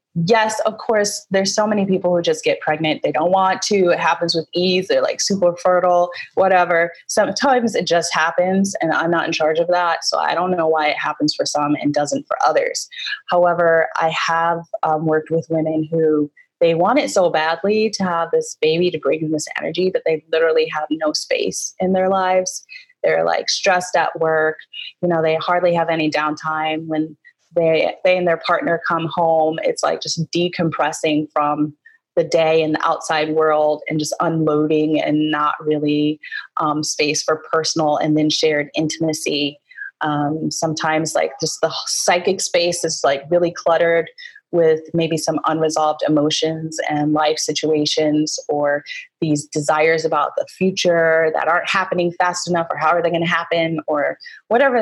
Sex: female